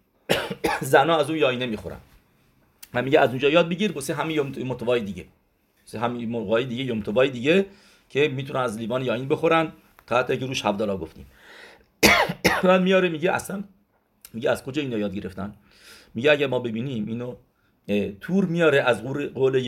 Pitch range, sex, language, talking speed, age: 110-150 Hz, male, English, 160 wpm, 50-69